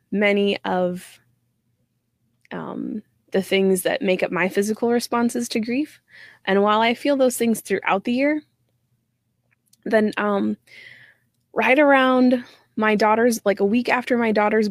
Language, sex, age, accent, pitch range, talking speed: English, female, 20-39, American, 180-235 Hz, 140 wpm